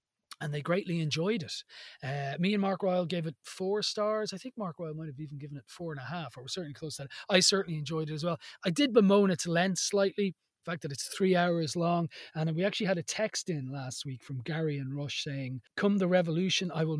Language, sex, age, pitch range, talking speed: English, male, 30-49, 145-190 Hz, 250 wpm